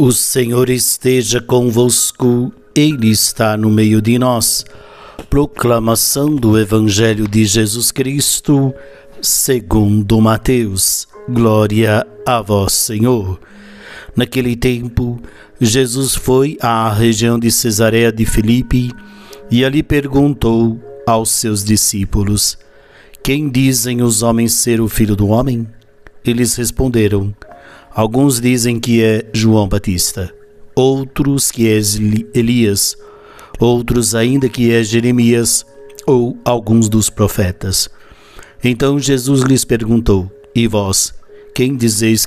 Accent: Brazilian